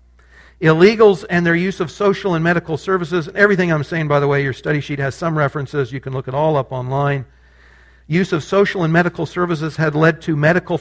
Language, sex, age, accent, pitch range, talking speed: English, male, 50-69, American, 140-175 Hz, 210 wpm